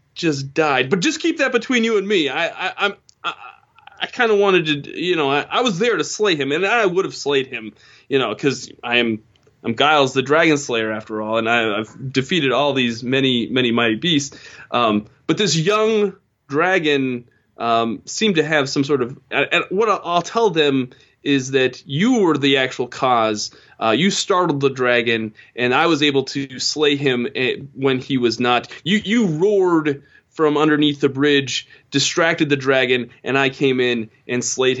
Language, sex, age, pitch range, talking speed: English, male, 20-39, 120-155 Hz, 195 wpm